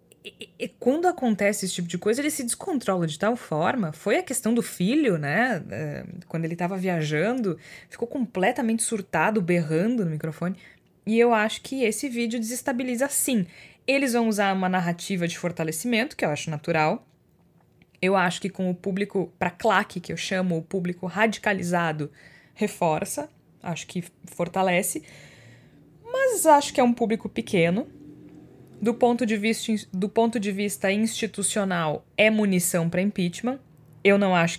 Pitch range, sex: 170-215 Hz, female